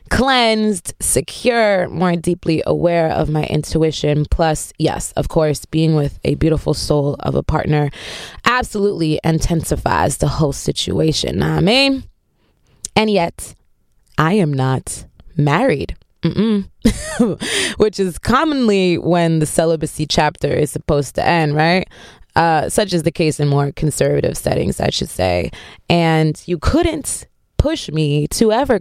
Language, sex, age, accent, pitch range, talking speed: English, female, 20-39, American, 155-195 Hz, 135 wpm